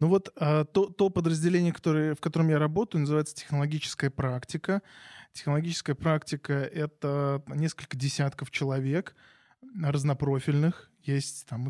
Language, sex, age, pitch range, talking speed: Russian, male, 20-39, 140-160 Hz, 105 wpm